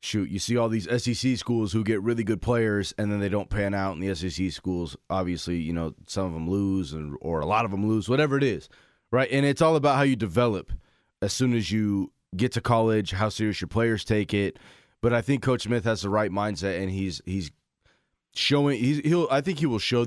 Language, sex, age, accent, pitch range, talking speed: English, male, 30-49, American, 100-125 Hz, 240 wpm